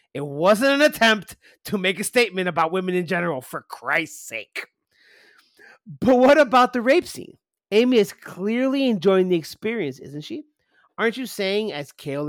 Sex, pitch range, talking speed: male, 190-240 Hz, 165 wpm